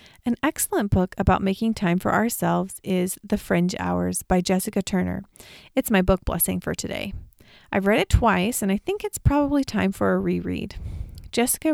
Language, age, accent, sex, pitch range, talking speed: English, 30-49, American, female, 185-230 Hz, 180 wpm